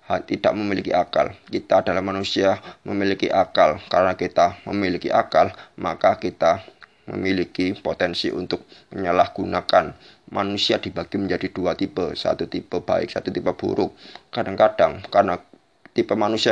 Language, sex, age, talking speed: Indonesian, male, 20-39, 120 wpm